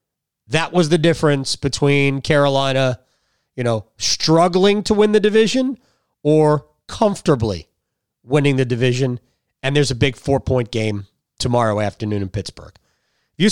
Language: English